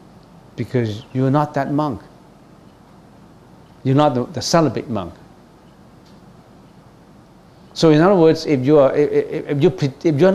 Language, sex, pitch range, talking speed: English, male, 110-150 Hz, 115 wpm